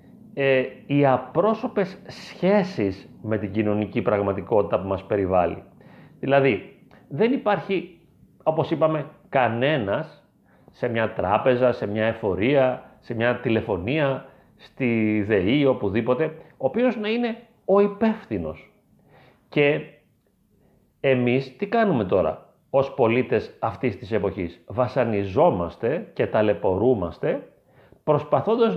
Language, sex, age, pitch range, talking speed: Greek, male, 40-59, 110-165 Hz, 100 wpm